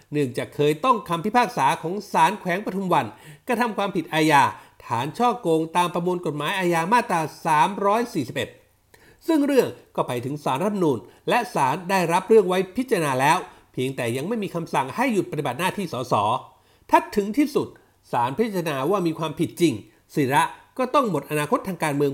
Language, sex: Thai, male